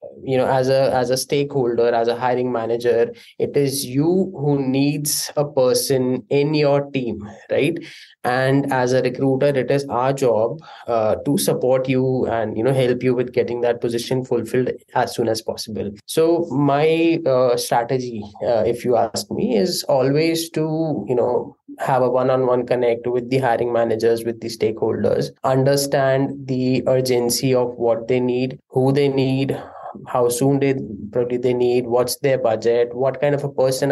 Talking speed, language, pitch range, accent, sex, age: 170 wpm, English, 125-140 Hz, Indian, male, 20-39